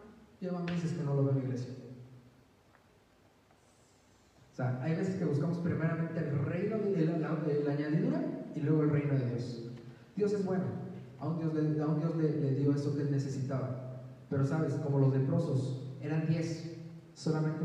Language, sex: Spanish, male